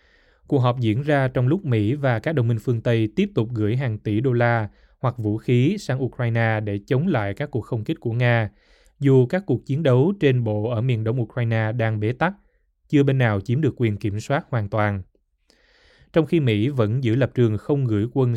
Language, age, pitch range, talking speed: Vietnamese, 20-39, 110-130 Hz, 220 wpm